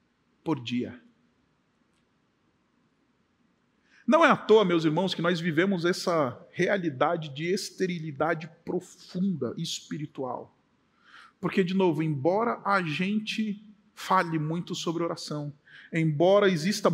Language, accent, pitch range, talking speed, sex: Italian, Brazilian, 165-220 Hz, 105 wpm, male